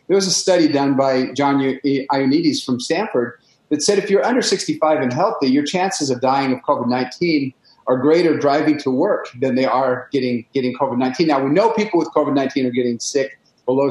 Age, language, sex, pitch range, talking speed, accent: 40-59, English, male, 130-185 Hz, 195 wpm, American